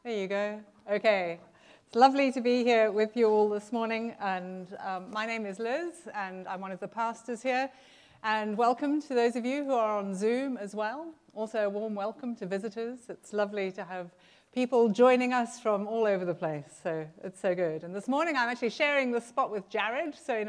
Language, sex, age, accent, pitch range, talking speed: English, female, 40-59, British, 210-295 Hz, 215 wpm